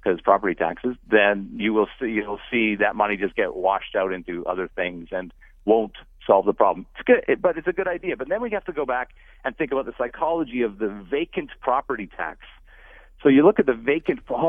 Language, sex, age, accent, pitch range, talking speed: English, male, 50-69, American, 110-180 Hz, 220 wpm